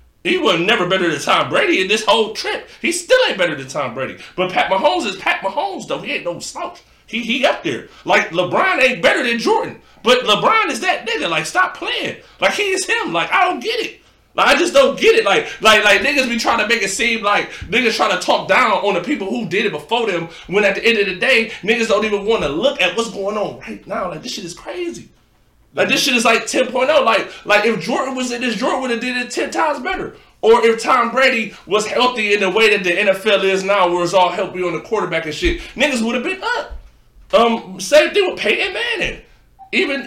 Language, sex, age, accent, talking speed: English, male, 20-39, American, 250 wpm